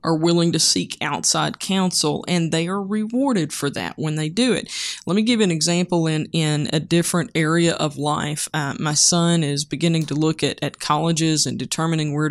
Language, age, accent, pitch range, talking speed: English, 20-39, American, 155-180 Hz, 200 wpm